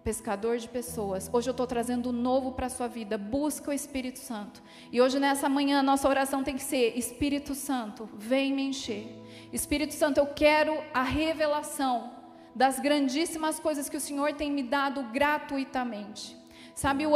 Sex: female